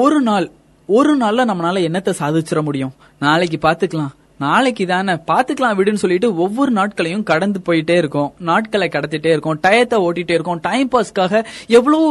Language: Tamil